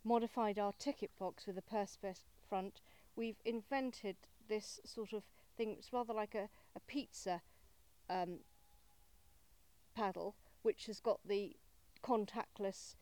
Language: English